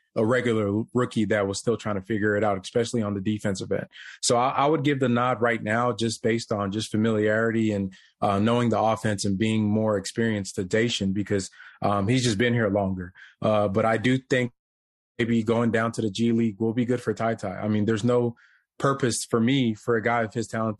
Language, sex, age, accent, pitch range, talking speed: English, male, 20-39, American, 105-120 Hz, 230 wpm